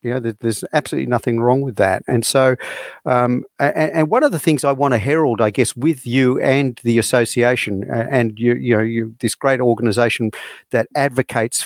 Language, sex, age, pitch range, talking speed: English, male, 50-69, 115-145 Hz, 185 wpm